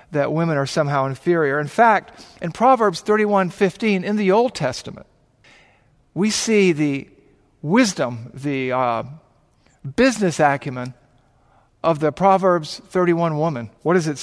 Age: 50-69